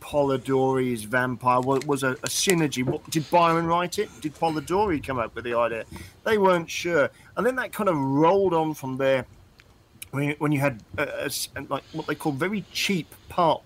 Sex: male